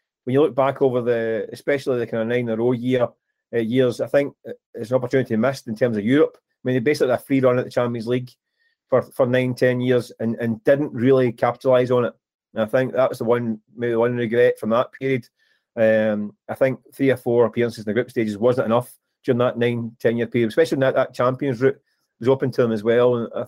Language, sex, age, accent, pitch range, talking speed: English, male, 30-49, British, 120-140 Hz, 240 wpm